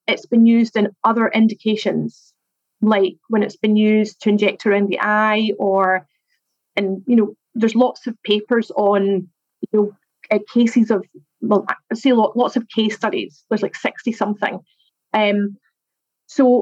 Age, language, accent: 30-49, English, British